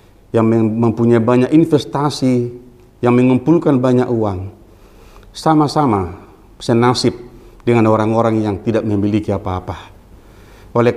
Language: Indonesian